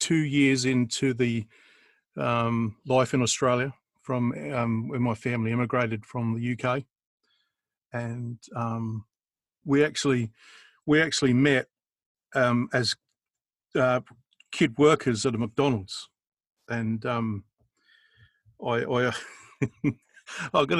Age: 50-69